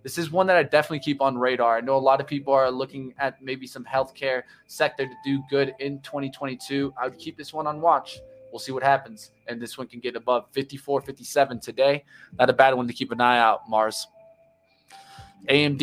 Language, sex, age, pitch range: English, male, 20-39, 130-145 Hz